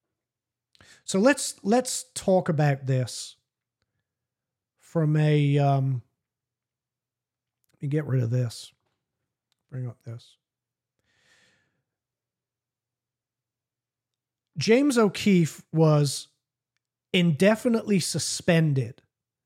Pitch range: 125-170 Hz